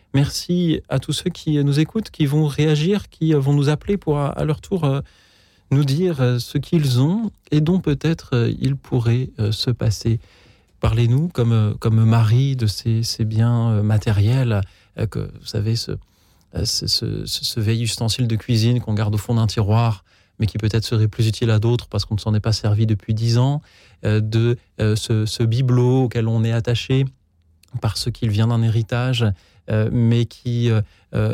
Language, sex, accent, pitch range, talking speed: French, male, French, 110-135 Hz, 175 wpm